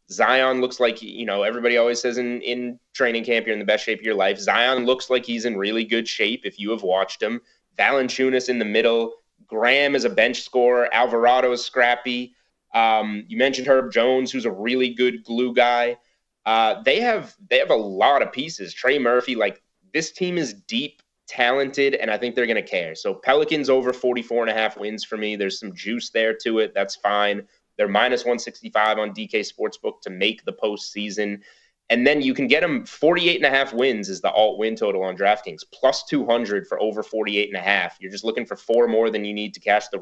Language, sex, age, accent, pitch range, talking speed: English, male, 30-49, American, 105-130 Hz, 215 wpm